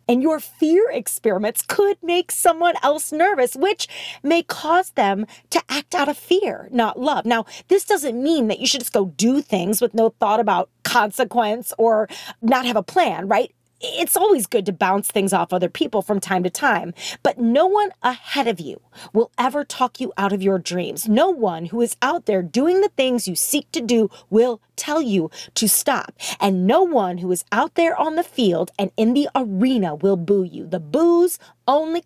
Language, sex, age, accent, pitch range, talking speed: English, female, 30-49, American, 205-305 Hz, 200 wpm